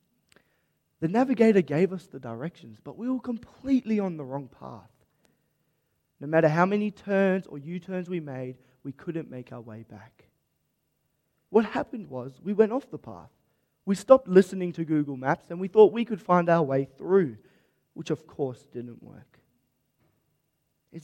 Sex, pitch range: male, 130-185 Hz